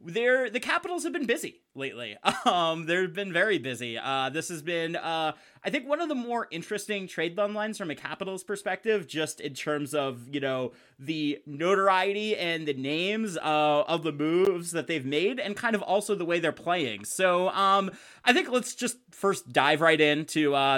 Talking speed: 195 wpm